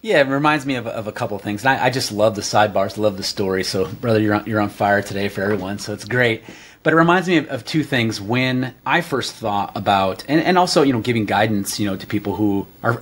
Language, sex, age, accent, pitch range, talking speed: English, male, 30-49, American, 110-145 Hz, 270 wpm